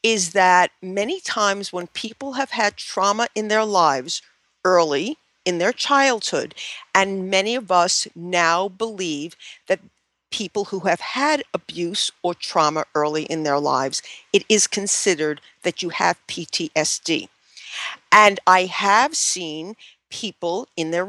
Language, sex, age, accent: English, female, 50-69, American